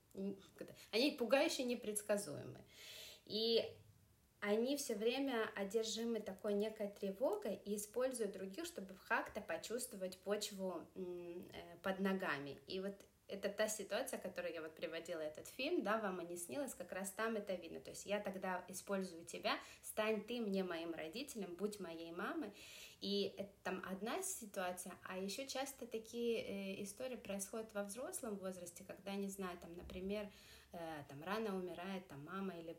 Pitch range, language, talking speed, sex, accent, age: 175-210 Hz, Russian, 145 wpm, female, native, 20-39